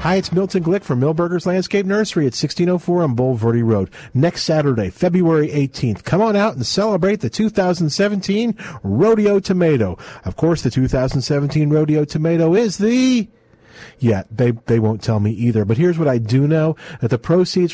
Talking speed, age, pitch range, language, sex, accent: 175 wpm, 50-69, 130-180 Hz, English, male, American